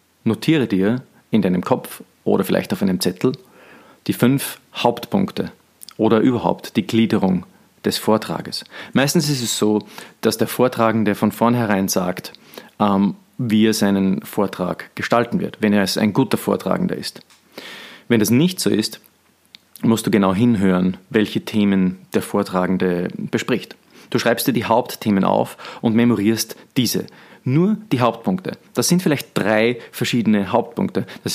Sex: male